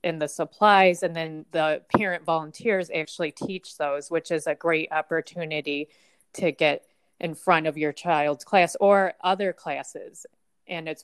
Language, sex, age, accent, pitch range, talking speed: English, female, 20-39, American, 155-185 Hz, 150 wpm